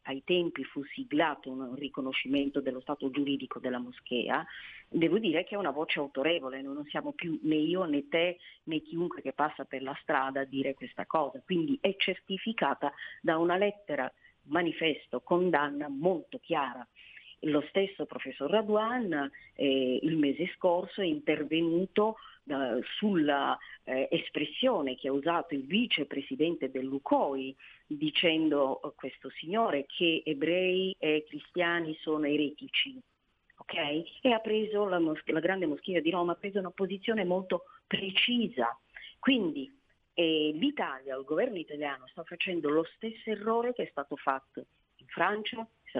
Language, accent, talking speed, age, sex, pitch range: Italian, native, 145 wpm, 40-59, female, 140-195 Hz